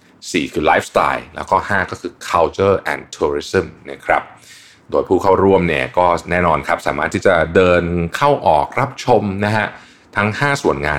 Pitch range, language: 75-105 Hz, Thai